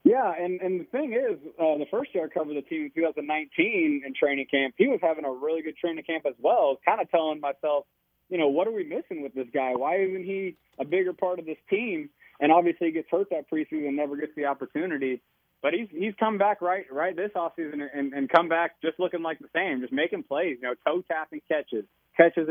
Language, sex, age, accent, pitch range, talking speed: English, male, 20-39, American, 140-180 Hz, 235 wpm